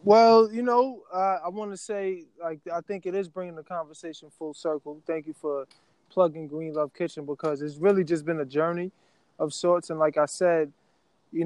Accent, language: American, English